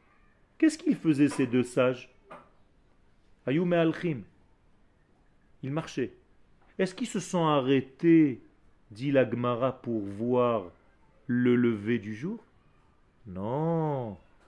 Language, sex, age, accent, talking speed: French, male, 40-59, French, 90 wpm